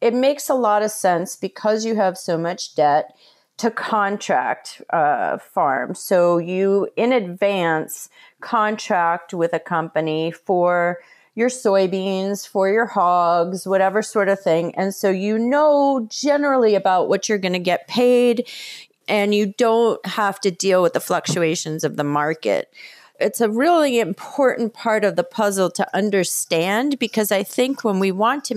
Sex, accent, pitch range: female, American, 170-225 Hz